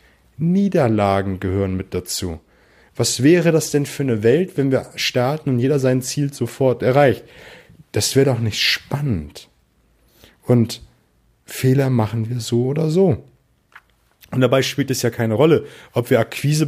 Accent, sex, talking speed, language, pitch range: German, male, 150 wpm, German, 115-145 Hz